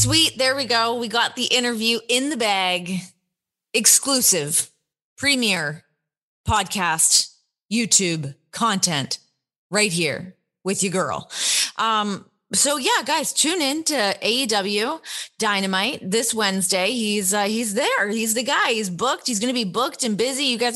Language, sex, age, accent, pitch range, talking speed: English, female, 20-39, American, 170-225 Hz, 140 wpm